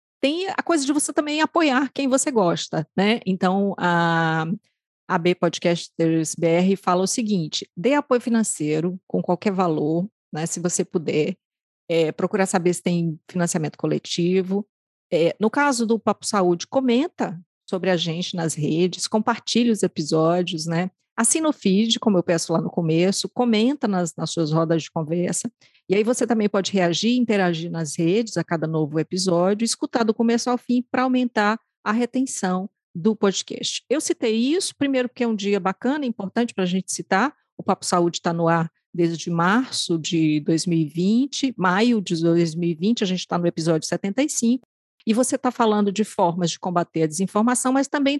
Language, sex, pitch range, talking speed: Portuguese, female, 170-240 Hz, 170 wpm